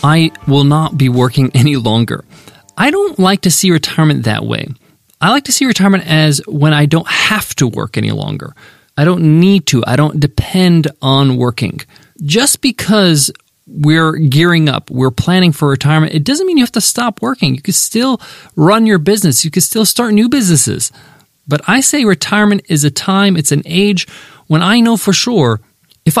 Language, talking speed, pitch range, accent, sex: English, 190 wpm, 145-205 Hz, American, male